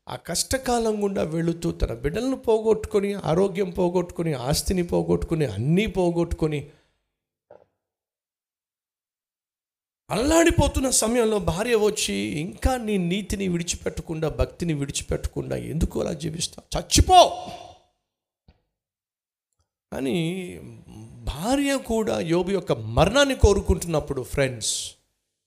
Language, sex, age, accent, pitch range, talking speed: Telugu, male, 50-69, native, 110-180 Hz, 80 wpm